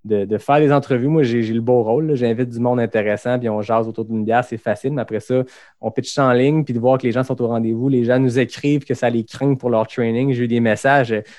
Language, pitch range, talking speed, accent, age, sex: French, 115-135 Hz, 290 wpm, Canadian, 20-39, male